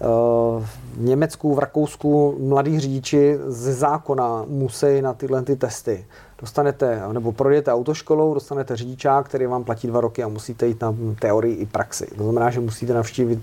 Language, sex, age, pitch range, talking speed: Czech, male, 40-59, 120-135 Hz, 155 wpm